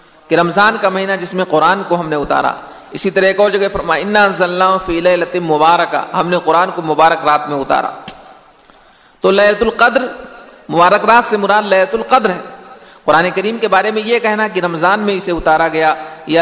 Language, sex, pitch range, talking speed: Urdu, male, 160-210 Hz, 165 wpm